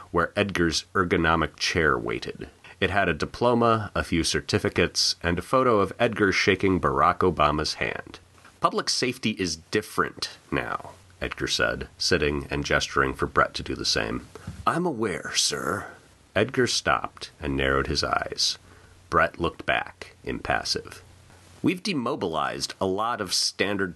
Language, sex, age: English, male, 30-49